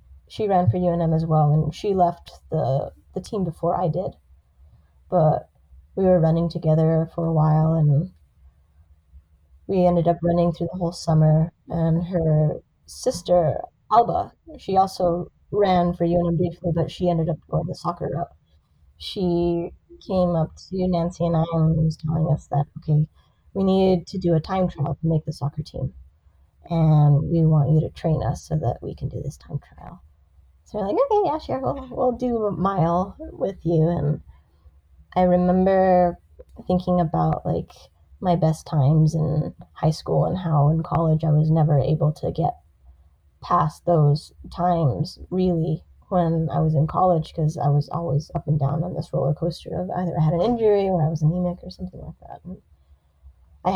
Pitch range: 145-175 Hz